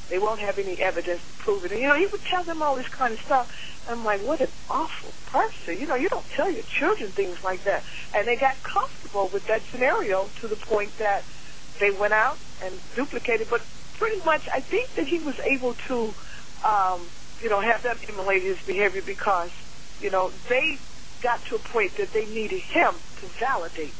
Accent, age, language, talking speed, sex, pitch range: American, 60-79, English, 210 wpm, female, 195-275 Hz